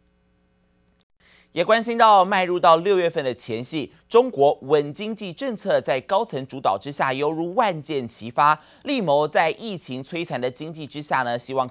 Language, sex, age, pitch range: Chinese, male, 30-49, 130-185 Hz